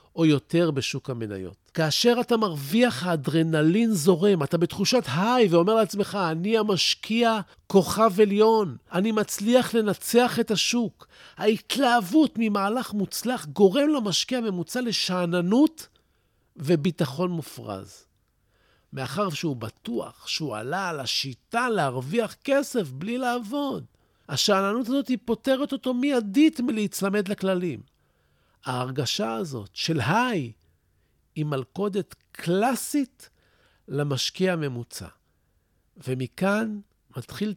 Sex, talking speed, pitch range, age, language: male, 95 wpm, 140-220 Hz, 50-69, Hebrew